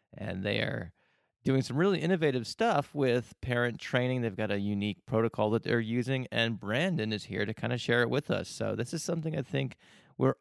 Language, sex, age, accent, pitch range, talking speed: English, male, 30-49, American, 105-130 Hz, 215 wpm